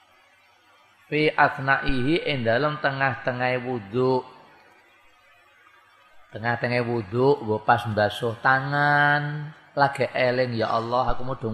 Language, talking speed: Indonesian, 105 wpm